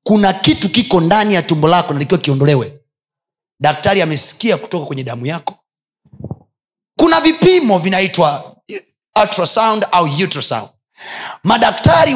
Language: Swahili